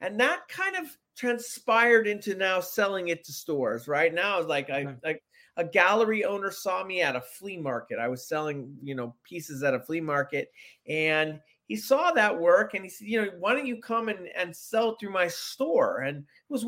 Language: English